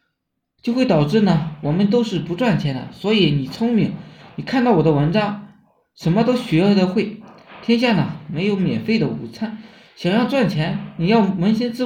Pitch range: 165-220 Hz